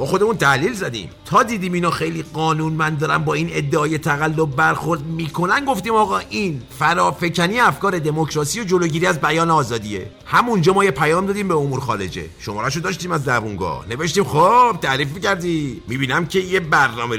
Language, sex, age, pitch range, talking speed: Persian, male, 50-69, 135-185 Hz, 175 wpm